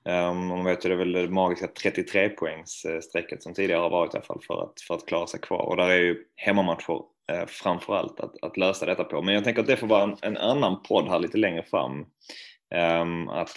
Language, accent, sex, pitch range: Swedish, native, male, 85-95 Hz